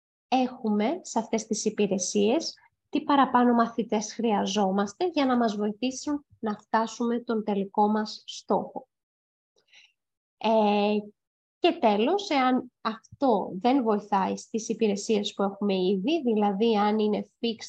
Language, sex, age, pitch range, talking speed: Greek, female, 20-39, 210-245 Hz, 120 wpm